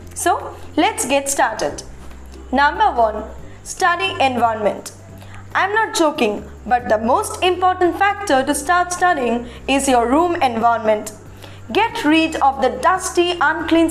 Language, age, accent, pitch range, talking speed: English, 20-39, Indian, 265-370 Hz, 125 wpm